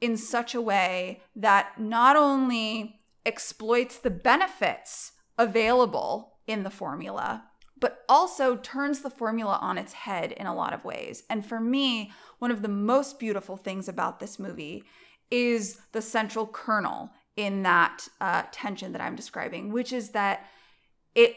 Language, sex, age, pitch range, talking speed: English, female, 20-39, 205-250 Hz, 150 wpm